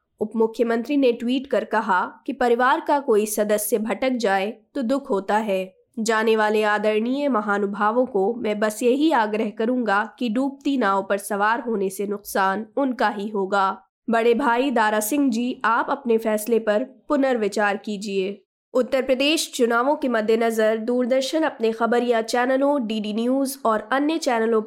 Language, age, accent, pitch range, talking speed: Hindi, 20-39, native, 215-260 Hz, 150 wpm